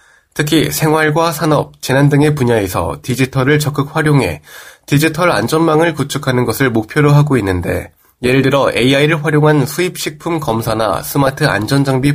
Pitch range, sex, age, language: 120-150 Hz, male, 20-39, Korean